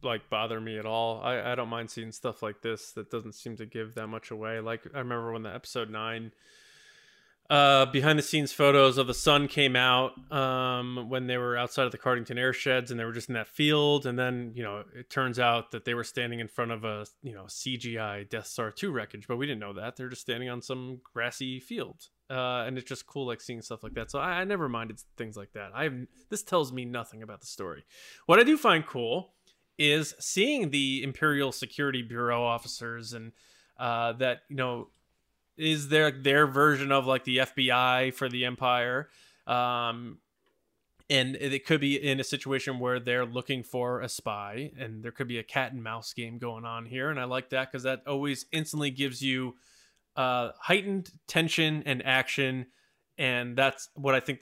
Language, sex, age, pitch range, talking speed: English, male, 20-39, 115-140 Hz, 210 wpm